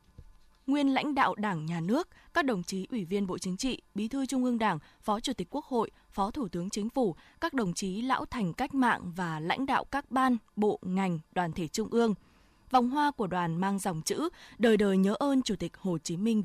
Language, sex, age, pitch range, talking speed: Vietnamese, female, 20-39, 185-250 Hz, 230 wpm